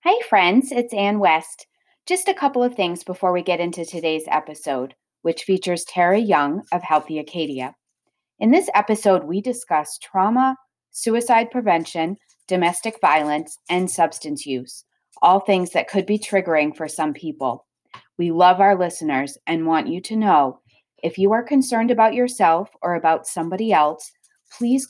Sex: female